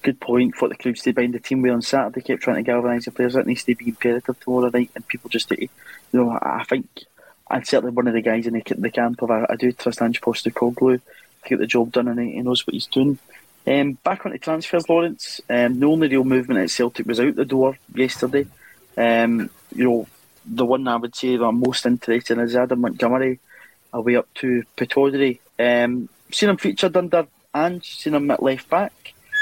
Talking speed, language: 230 wpm, English